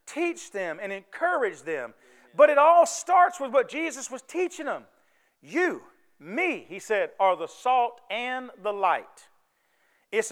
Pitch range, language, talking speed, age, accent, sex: 210-310 Hz, English, 150 wpm, 40-59, American, male